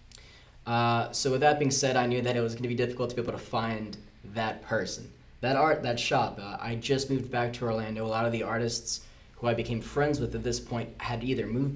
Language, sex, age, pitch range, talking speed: English, male, 10-29, 110-125 Hz, 250 wpm